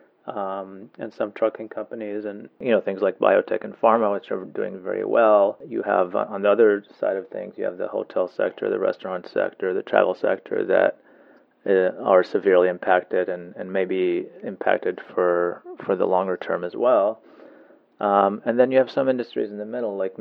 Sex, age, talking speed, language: male, 30-49, 195 wpm, English